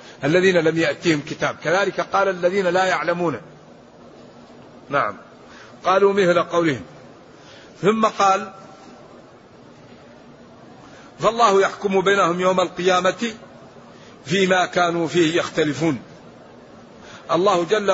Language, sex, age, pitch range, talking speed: Arabic, male, 50-69, 170-195 Hz, 85 wpm